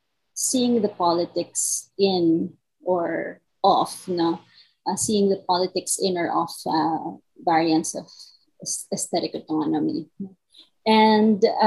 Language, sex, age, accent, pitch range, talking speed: Filipino, female, 30-49, native, 170-205 Hz, 105 wpm